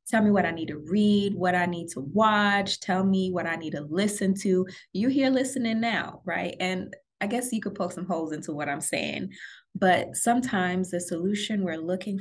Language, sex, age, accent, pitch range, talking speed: English, female, 20-39, American, 165-200 Hz, 210 wpm